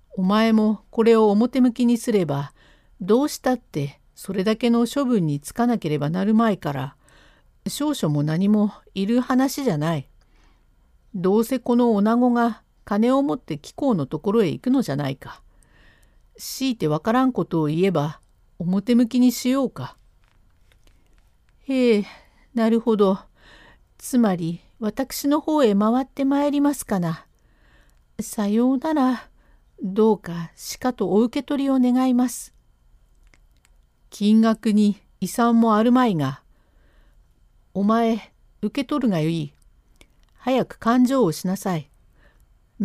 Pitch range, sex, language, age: 155-250 Hz, female, Japanese, 50-69